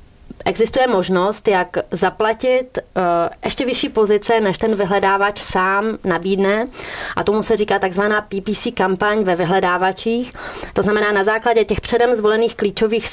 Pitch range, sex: 180-215 Hz, female